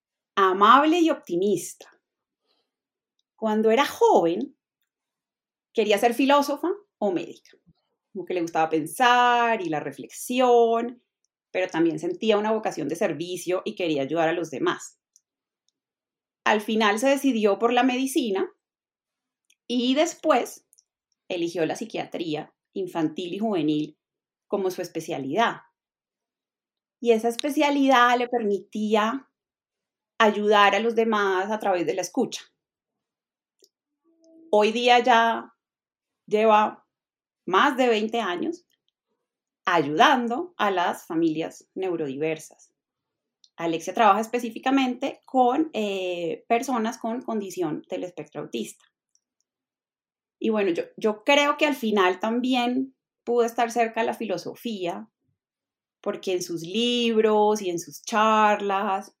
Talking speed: 110 wpm